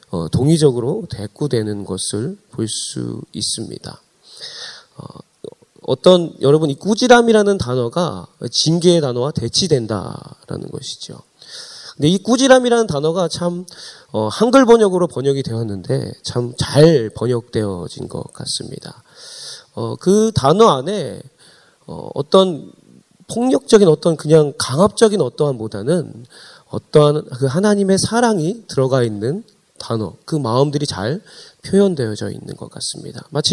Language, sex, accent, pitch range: Korean, male, native, 130-195 Hz